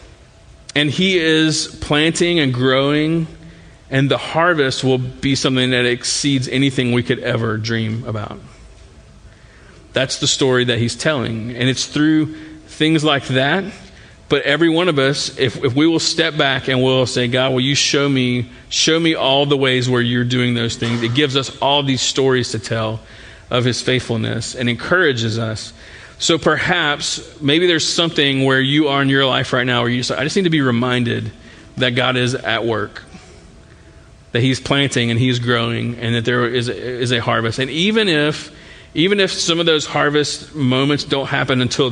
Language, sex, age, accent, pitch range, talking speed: English, male, 40-59, American, 120-145 Hz, 185 wpm